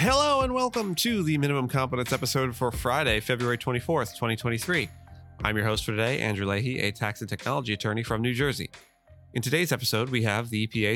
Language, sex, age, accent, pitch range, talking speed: English, male, 30-49, American, 100-125 Hz, 190 wpm